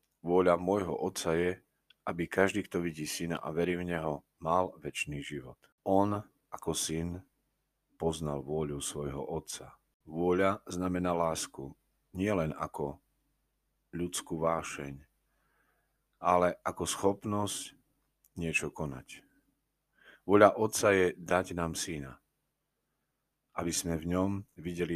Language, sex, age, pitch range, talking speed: Slovak, male, 40-59, 80-95 Hz, 115 wpm